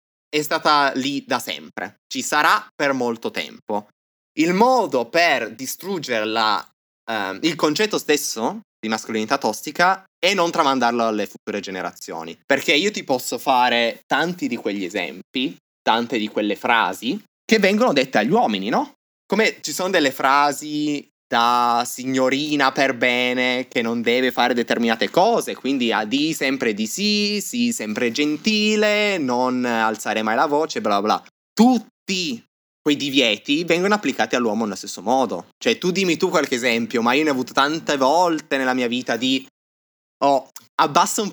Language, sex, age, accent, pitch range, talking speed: Italian, male, 20-39, native, 120-170 Hz, 155 wpm